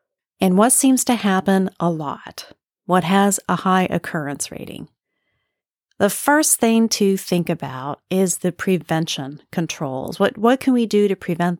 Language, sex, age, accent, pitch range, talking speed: English, female, 40-59, American, 170-220 Hz, 155 wpm